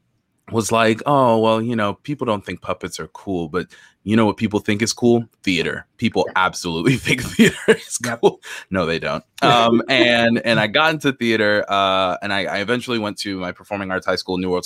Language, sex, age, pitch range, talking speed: English, male, 20-39, 95-120 Hz, 210 wpm